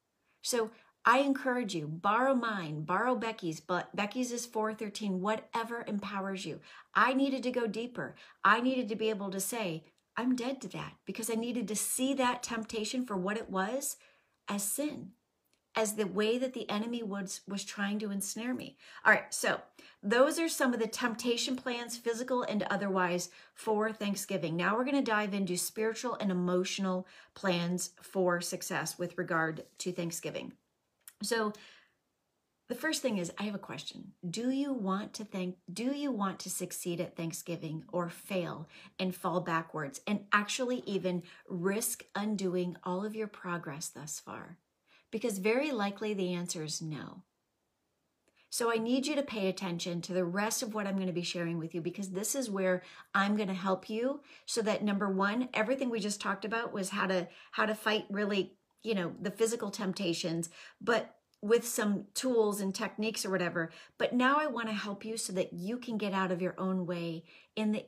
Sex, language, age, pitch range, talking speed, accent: female, English, 40-59, 185-230 Hz, 180 wpm, American